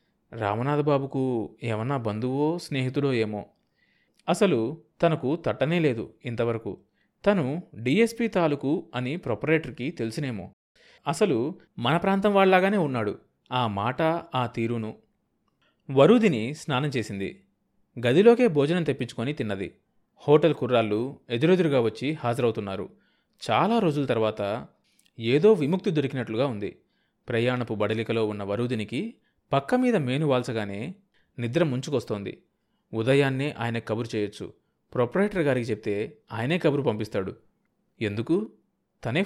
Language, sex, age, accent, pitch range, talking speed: Telugu, male, 30-49, native, 115-165 Hz, 100 wpm